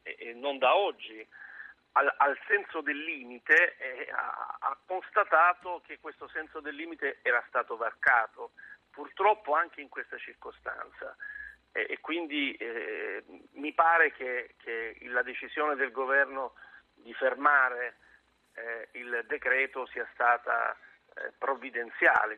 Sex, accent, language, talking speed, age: male, native, Italian, 125 wpm, 50-69